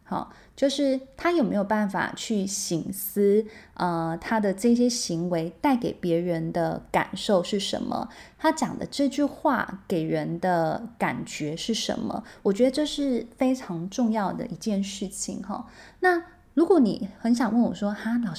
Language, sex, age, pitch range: Chinese, female, 20-39, 180-245 Hz